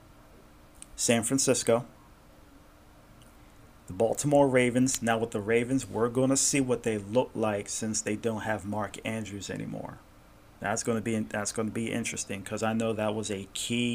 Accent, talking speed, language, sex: American, 160 wpm, English, male